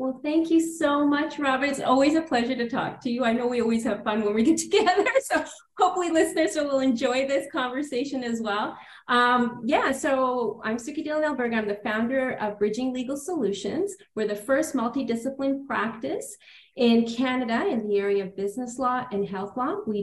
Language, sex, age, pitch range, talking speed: English, female, 30-49, 200-260 Hz, 190 wpm